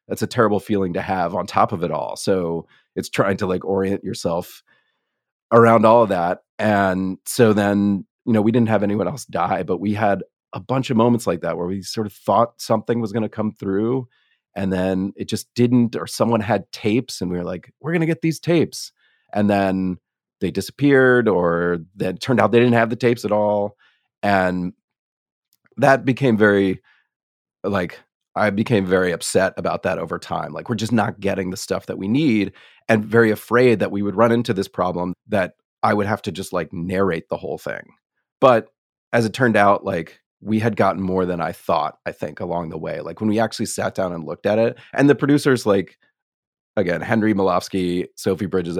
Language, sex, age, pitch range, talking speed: English, male, 30-49, 95-115 Hz, 205 wpm